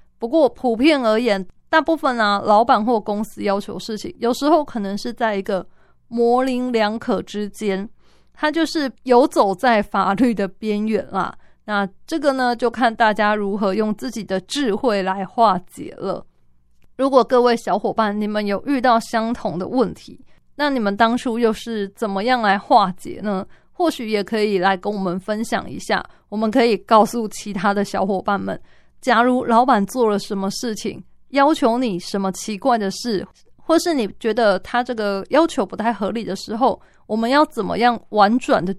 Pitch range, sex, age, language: 200-245 Hz, female, 20-39, Chinese